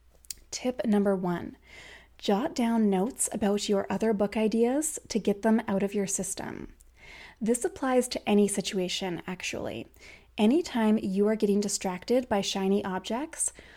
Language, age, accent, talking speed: English, 20-39, American, 140 wpm